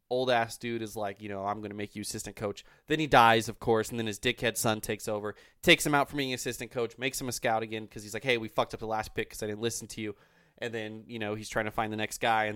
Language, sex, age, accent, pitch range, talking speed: English, male, 20-39, American, 110-145 Hz, 310 wpm